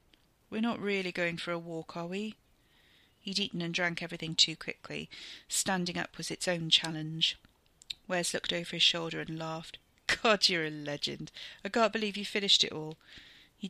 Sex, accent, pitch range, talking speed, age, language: female, British, 165-200 Hz, 180 wpm, 40-59, English